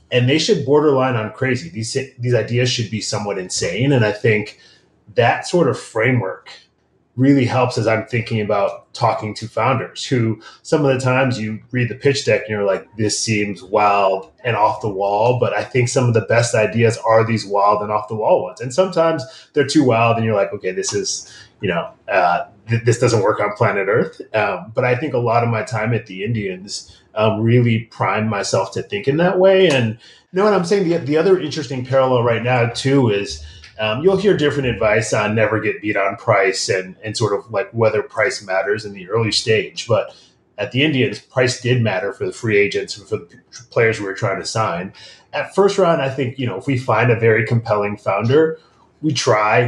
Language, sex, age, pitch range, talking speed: English, male, 30-49, 110-140 Hz, 215 wpm